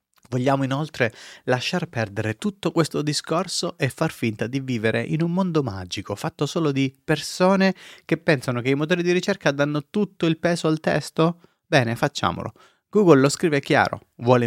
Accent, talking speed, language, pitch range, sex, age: native, 165 wpm, Italian, 110-140 Hz, male, 30-49